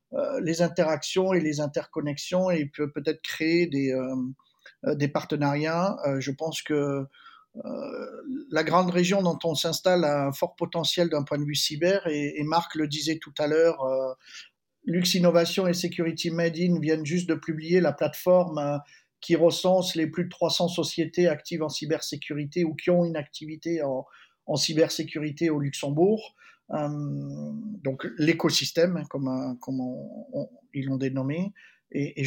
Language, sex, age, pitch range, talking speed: English, male, 50-69, 140-170 Hz, 155 wpm